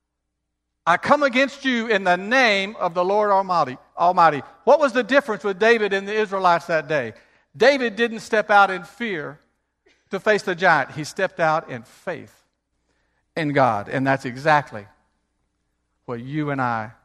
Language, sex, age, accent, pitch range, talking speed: English, male, 50-69, American, 105-150 Hz, 165 wpm